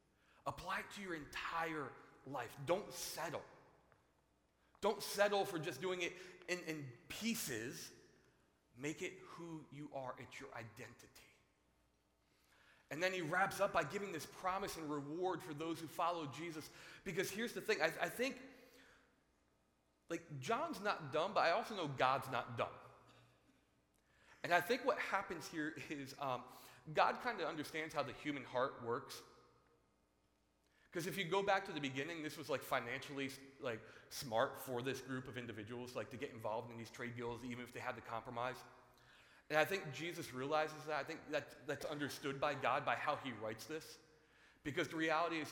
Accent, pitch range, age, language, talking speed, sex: American, 120-165 Hz, 30-49, English, 175 wpm, male